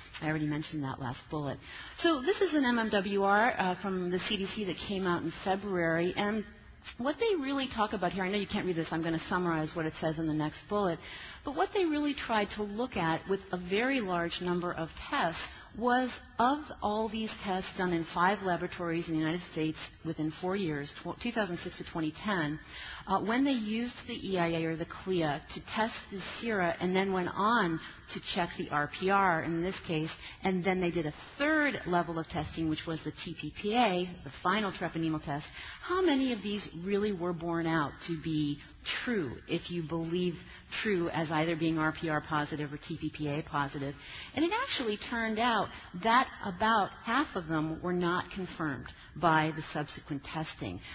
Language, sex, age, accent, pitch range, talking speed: English, female, 40-59, American, 160-210 Hz, 185 wpm